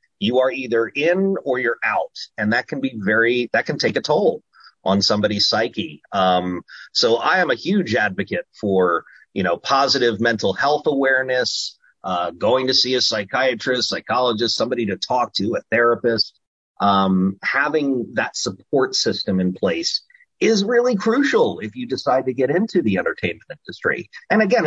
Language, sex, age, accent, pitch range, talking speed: English, male, 30-49, American, 110-175 Hz, 165 wpm